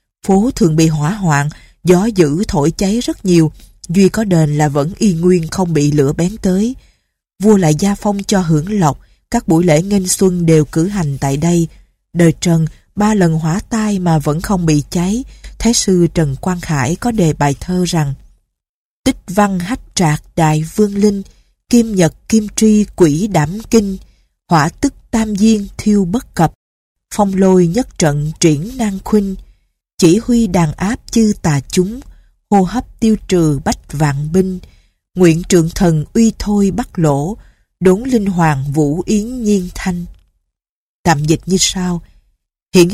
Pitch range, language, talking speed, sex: 160-210 Hz, Vietnamese, 170 wpm, female